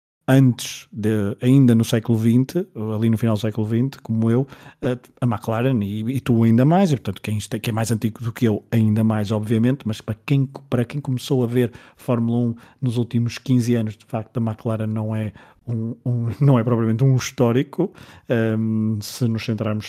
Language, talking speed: Portuguese, 195 wpm